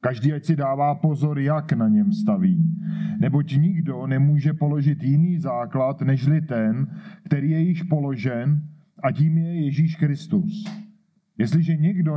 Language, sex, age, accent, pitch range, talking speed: Czech, male, 40-59, native, 140-175 Hz, 140 wpm